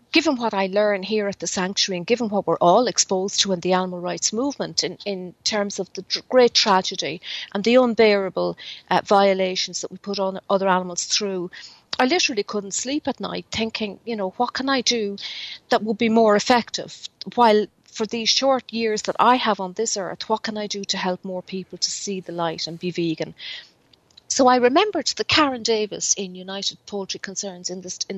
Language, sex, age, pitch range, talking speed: English, female, 40-59, 185-225 Hz, 200 wpm